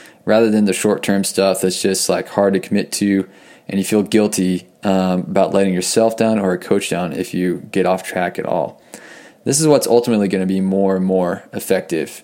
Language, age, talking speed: English, 20-39, 210 wpm